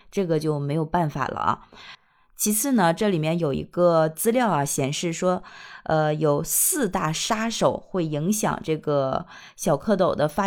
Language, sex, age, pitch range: Chinese, female, 20-39, 165-220 Hz